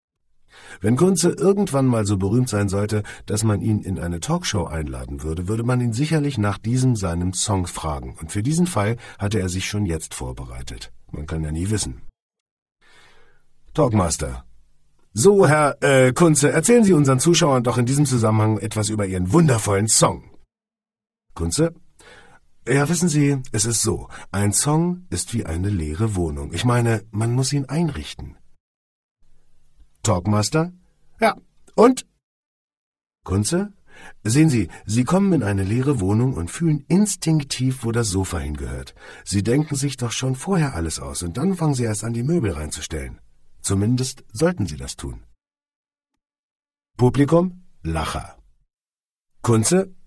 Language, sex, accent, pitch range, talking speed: English, male, German, 90-150 Hz, 145 wpm